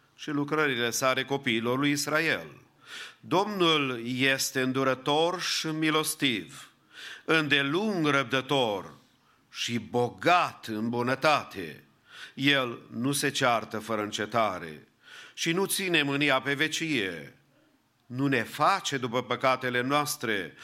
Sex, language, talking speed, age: male, English, 100 wpm, 50-69